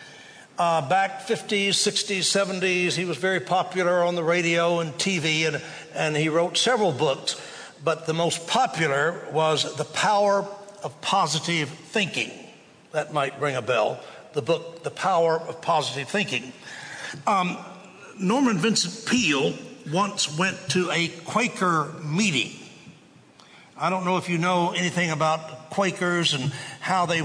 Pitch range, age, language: 150-185 Hz, 60-79, English